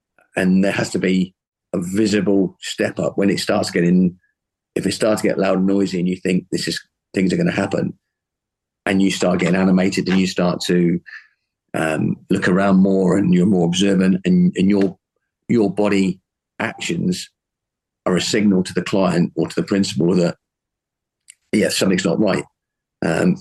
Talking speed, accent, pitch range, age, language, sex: 175 wpm, British, 90-100 Hz, 40-59, English, male